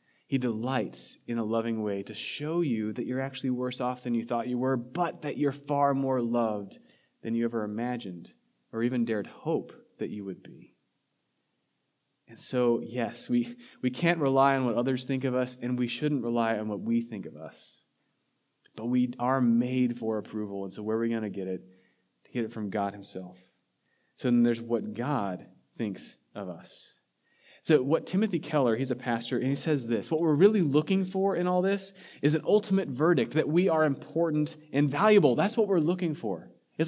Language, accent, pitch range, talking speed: English, American, 115-150 Hz, 200 wpm